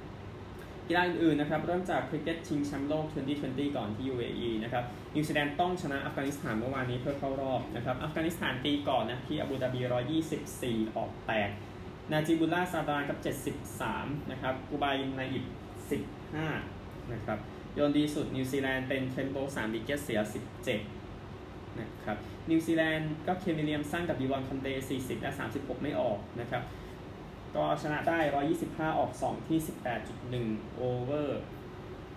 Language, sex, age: Thai, male, 20-39